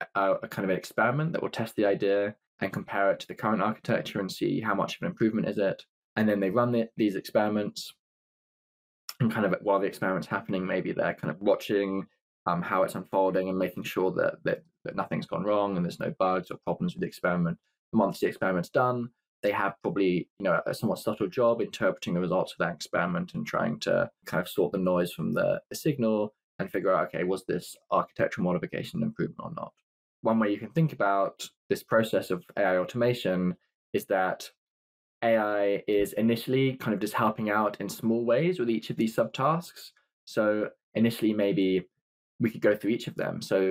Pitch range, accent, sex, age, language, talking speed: 95-115 Hz, British, male, 20-39, English, 205 wpm